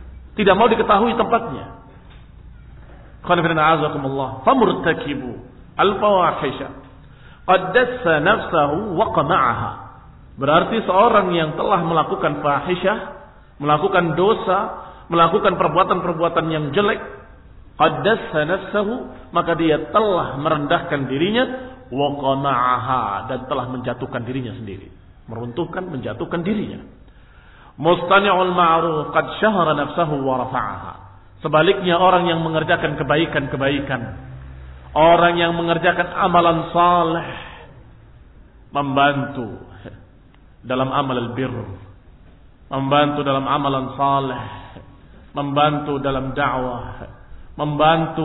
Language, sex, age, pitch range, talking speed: Indonesian, male, 50-69, 130-180 Hz, 70 wpm